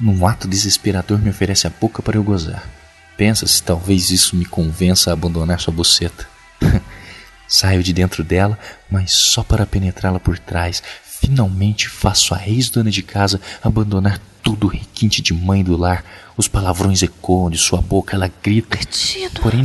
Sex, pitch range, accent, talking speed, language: male, 90-110 Hz, Brazilian, 160 wpm, Portuguese